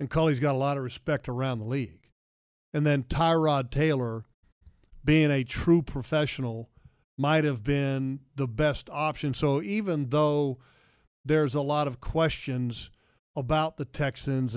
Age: 50-69